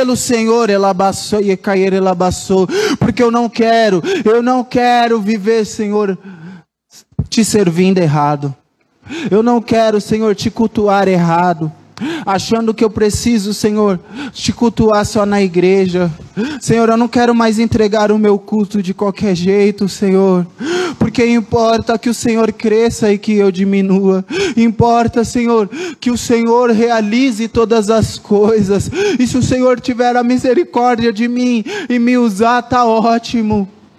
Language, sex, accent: Portuguese, male, Brazilian